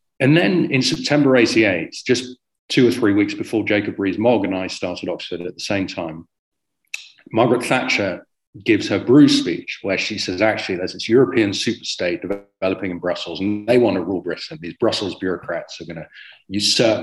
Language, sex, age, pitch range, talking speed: English, male, 40-59, 95-130 Hz, 180 wpm